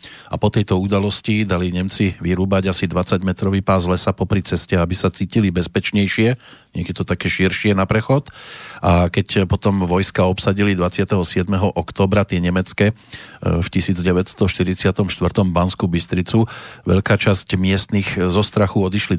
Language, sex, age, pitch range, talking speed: Slovak, male, 40-59, 90-110 Hz, 130 wpm